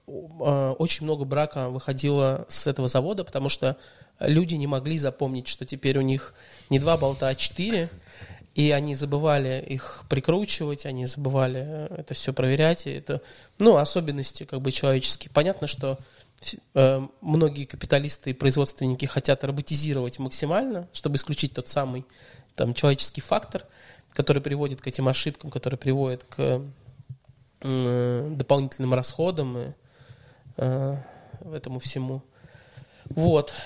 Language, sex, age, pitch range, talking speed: Russian, male, 20-39, 130-145 Hz, 125 wpm